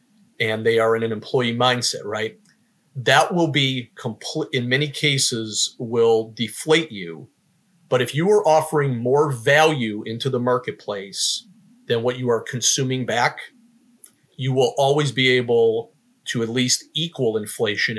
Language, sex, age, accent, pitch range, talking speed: English, male, 40-59, American, 120-165 Hz, 145 wpm